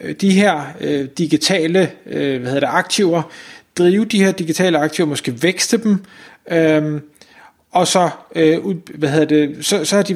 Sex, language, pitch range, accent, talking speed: male, Danish, 150-185 Hz, native, 160 wpm